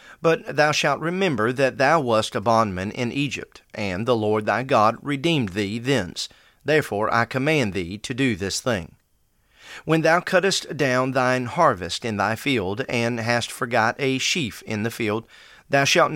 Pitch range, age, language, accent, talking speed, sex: 105-140 Hz, 40-59, English, American, 170 wpm, male